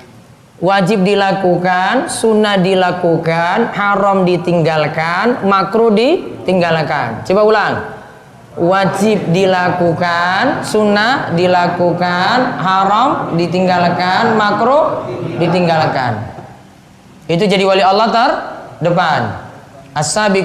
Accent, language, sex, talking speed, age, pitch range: native, Indonesian, female, 70 wpm, 20-39, 165-210 Hz